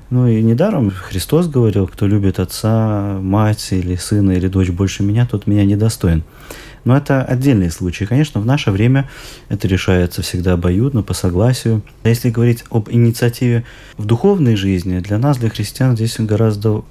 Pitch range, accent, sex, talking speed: 95-120 Hz, native, male, 165 wpm